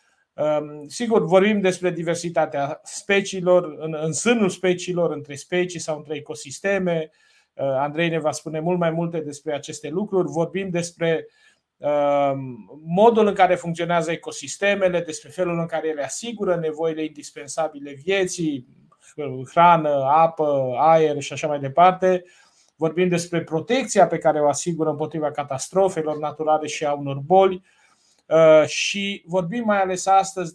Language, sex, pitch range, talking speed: Romanian, male, 155-185 Hz, 130 wpm